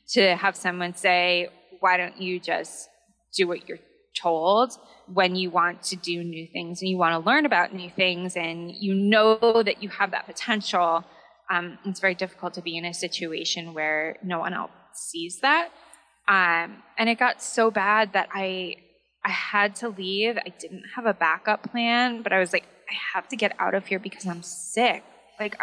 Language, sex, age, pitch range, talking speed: English, female, 20-39, 175-210 Hz, 195 wpm